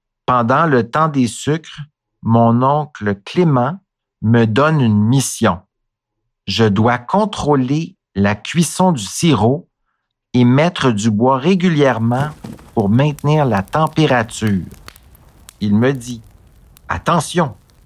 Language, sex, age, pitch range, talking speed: English, male, 60-79, 105-145 Hz, 110 wpm